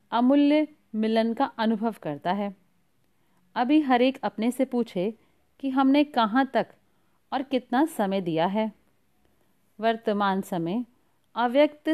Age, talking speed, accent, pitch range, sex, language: 40-59, 115 wpm, native, 205-270 Hz, female, Hindi